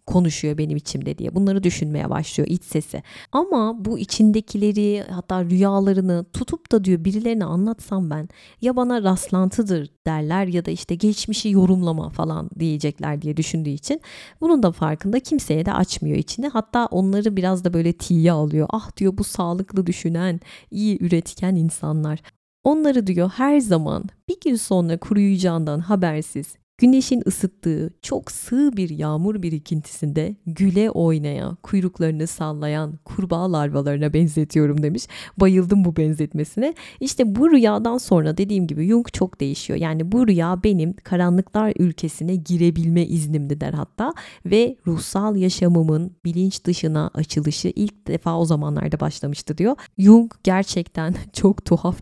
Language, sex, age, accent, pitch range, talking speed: Turkish, female, 30-49, native, 160-205 Hz, 135 wpm